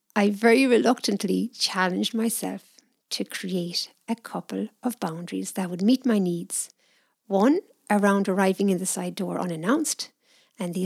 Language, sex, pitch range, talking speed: English, female, 190-255 Hz, 145 wpm